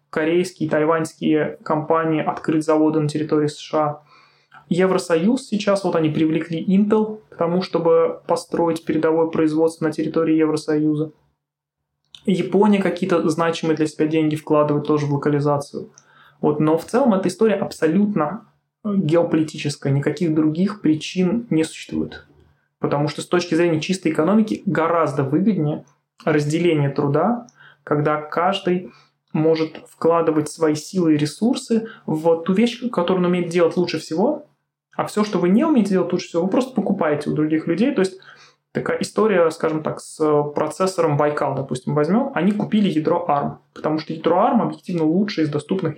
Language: Russian